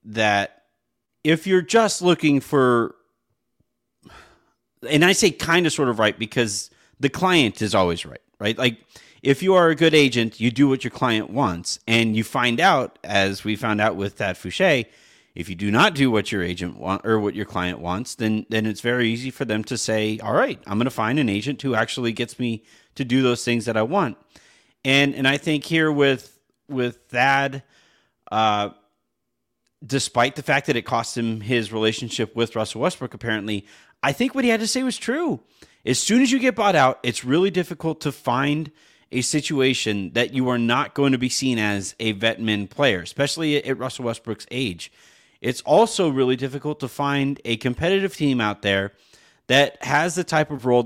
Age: 30-49